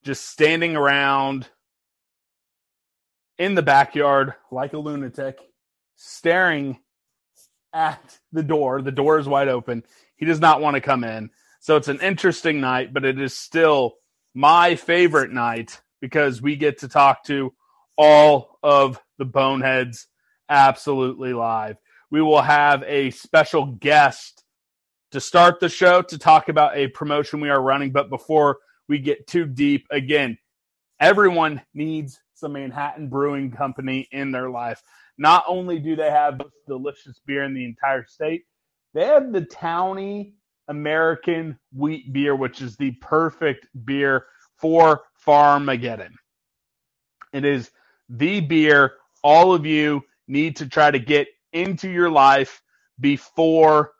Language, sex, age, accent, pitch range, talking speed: English, male, 30-49, American, 135-155 Hz, 140 wpm